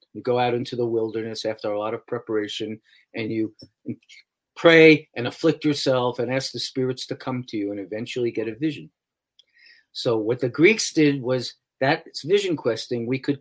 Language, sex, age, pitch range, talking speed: English, male, 50-69, 125-150 Hz, 185 wpm